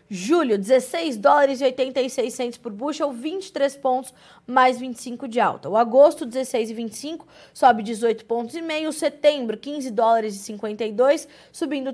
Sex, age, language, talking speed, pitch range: female, 20-39, Portuguese, 135 wpm, 230-290 Hz